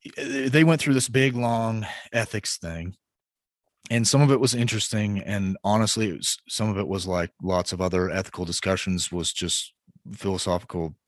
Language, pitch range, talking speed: English, 95-115 Hz, 155 wpm